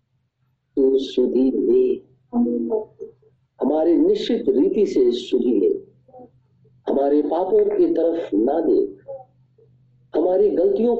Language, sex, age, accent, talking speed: Hindi, male, 50-69, native, 85 wpm